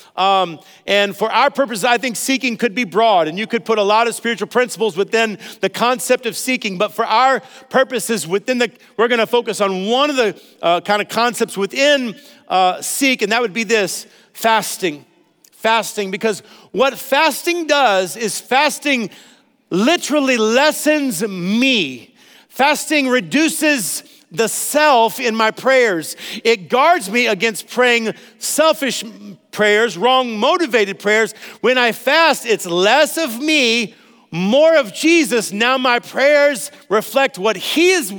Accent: American